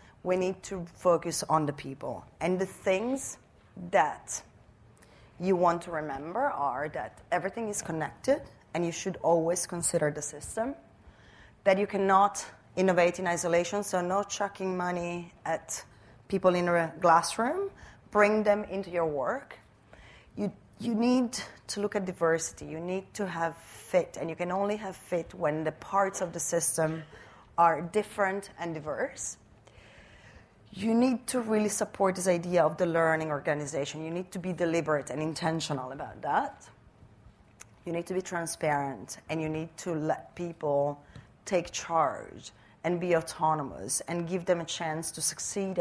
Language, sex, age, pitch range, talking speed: English, female, 30-49, 155-190 Hz, 155 wpm